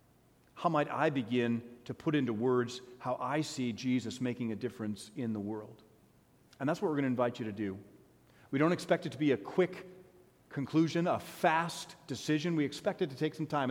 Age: 40-59